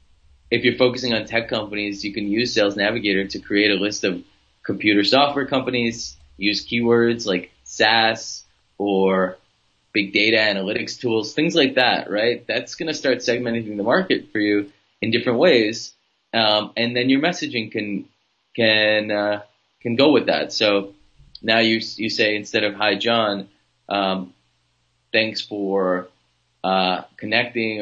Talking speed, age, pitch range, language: 150 wpm, 20-39, 95-115 Hz, English